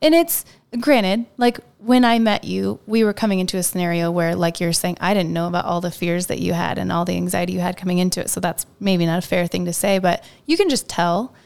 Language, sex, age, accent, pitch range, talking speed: English, female, 20-39, American, 175-225 Hz, 265 wpm